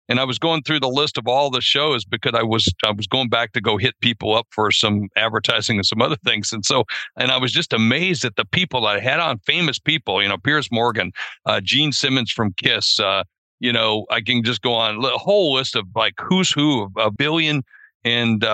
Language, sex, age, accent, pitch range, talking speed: English, male, 60-79, American, 115-150 Hz, 235 wpm